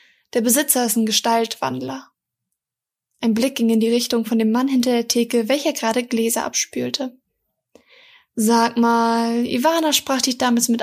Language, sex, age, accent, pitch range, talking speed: German, female, 20-39, German, 230-270 Hz, 155 wpm